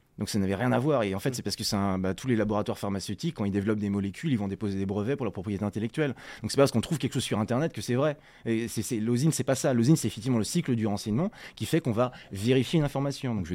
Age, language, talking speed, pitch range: 20-39, French, 300 wpm, 105-135 Hz